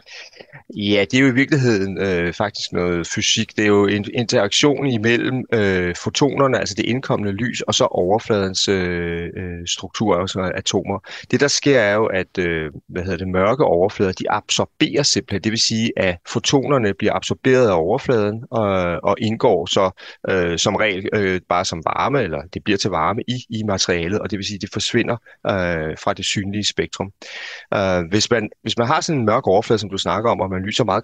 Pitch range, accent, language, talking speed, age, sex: 95-115 Hz, native, Danish, 195 wpm, 30-49, male